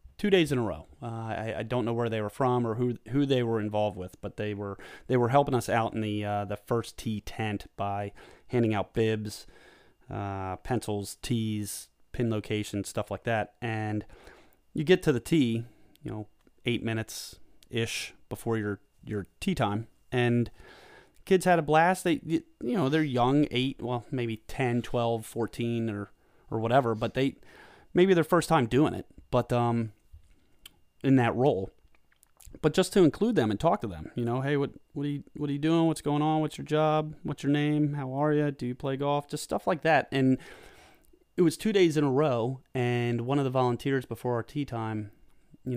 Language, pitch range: English, 110-145 Hz